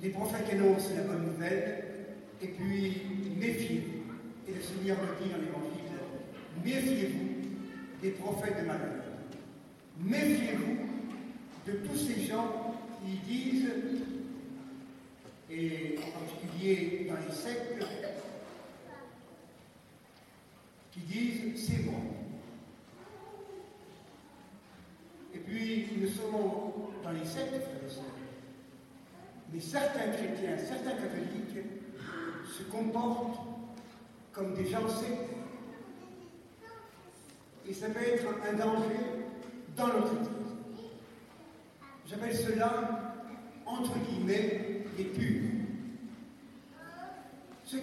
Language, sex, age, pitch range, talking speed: French, male, 60-79, 195-240 Hz, 90 wpm